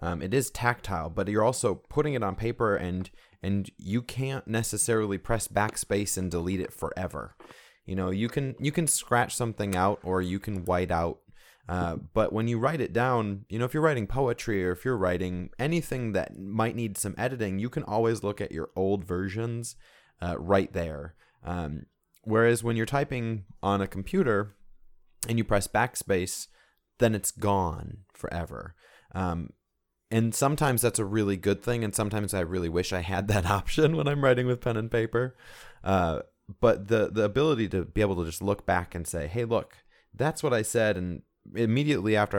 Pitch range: 90-115 Hz